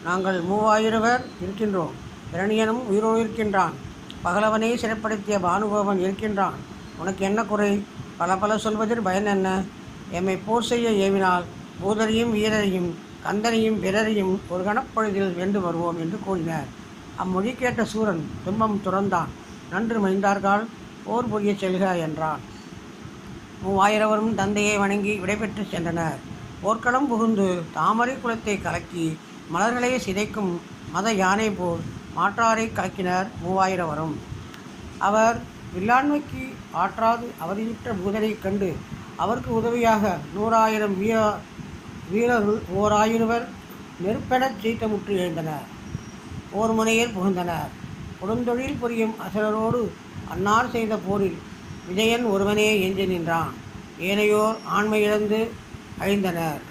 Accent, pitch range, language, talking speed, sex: native, 185-220 Hz, Tamil, 95 wpm, female